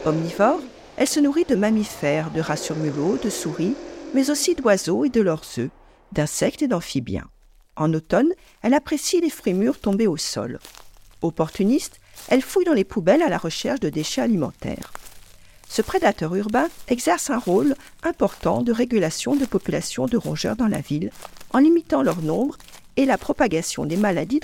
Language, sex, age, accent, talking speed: French, female, 50-69, French, 165 wpm